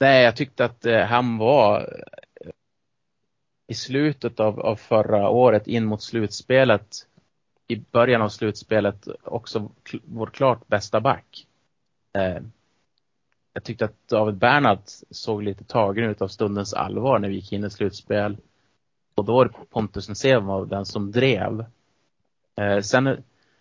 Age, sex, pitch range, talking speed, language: 30-49, male, 100-120 Hz, 130 wpm, Swedish